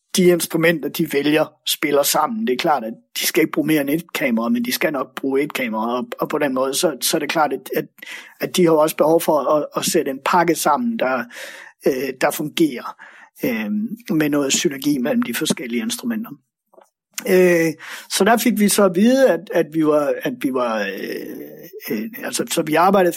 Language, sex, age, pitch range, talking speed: Danish, male, 60-79, 155-215 Hz, 185 wpm